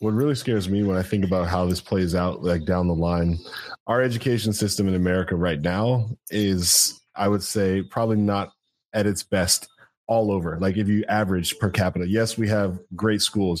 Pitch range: 95-115 Hz